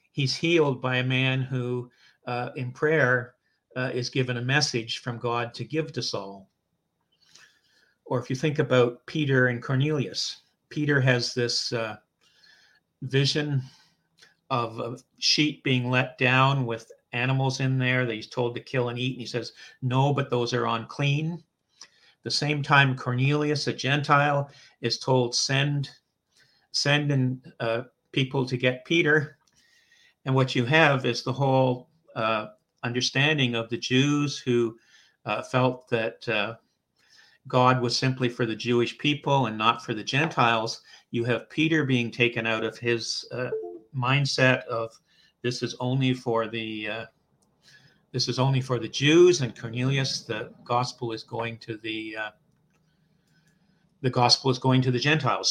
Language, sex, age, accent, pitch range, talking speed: English, male, 50-69, American, 120-140 Hz, 150 wpm